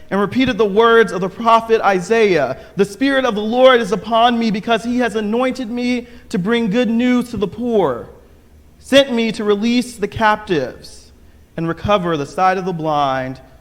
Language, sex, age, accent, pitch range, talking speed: English, male, 40-59, American, 165-245 Hz, 180 wpm